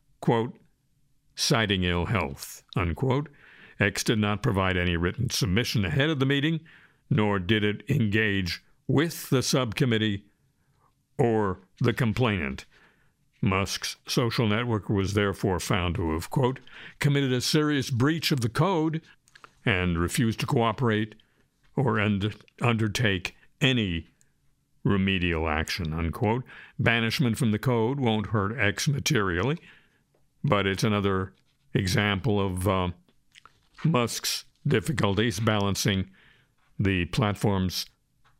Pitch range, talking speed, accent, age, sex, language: 105-140 Hz, 110 wpm, American, 60-79, male, English